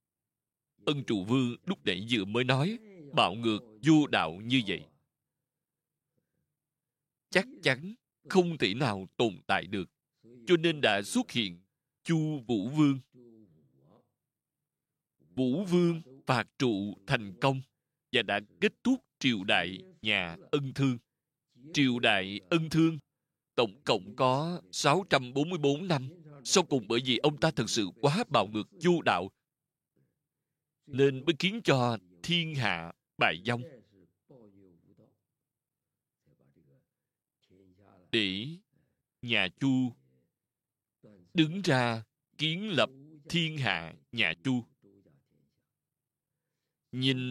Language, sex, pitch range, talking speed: Vietnamese, male, 115-155 Hz, 110 wpm